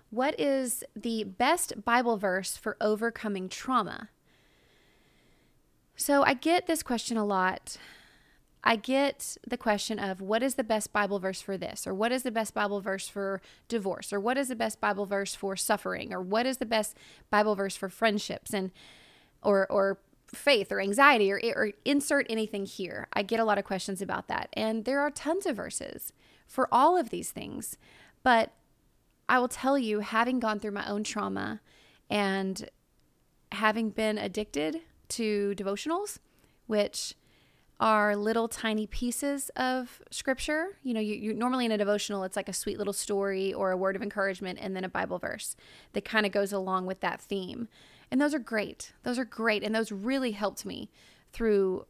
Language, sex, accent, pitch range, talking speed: English, female, American, 195-240 Hz, 180 wpm